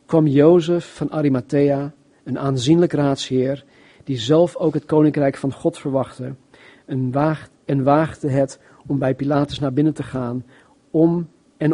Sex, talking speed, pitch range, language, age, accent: male, 140 wpm, 130-150 Hz, Dutch, 40-59, Dutch